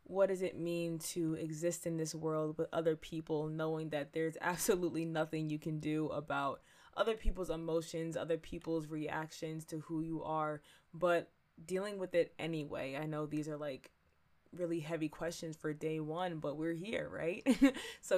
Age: 20-39